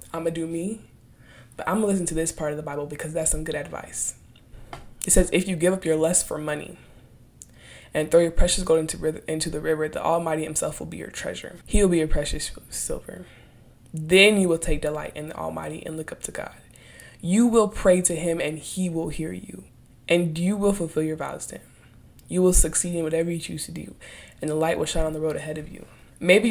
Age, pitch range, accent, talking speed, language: 20-39, 155-175 Hz, American, 230 wpm, English